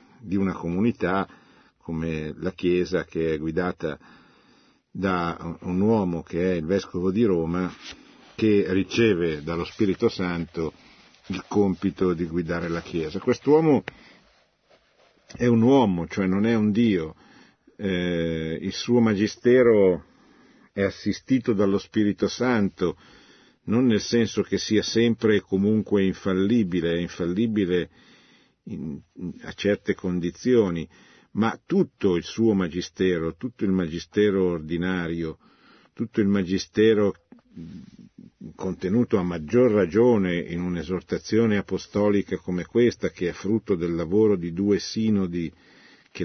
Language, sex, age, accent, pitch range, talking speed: Italian, male, 50-69, native, 85-105 Hz, 120 wpm